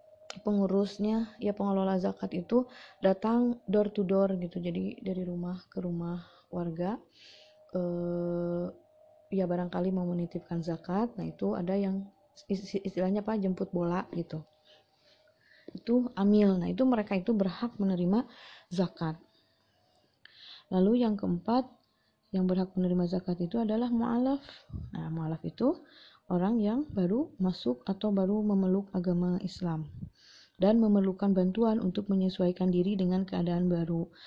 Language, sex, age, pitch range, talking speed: English, female, 20-39, 175-210 Hz, 125 wpm